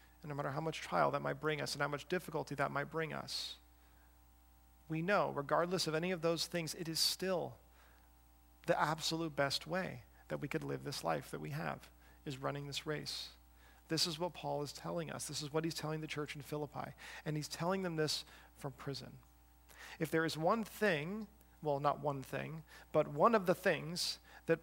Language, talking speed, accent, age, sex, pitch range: English, 205 wpm, American, 40-59, male, 145-180 Hz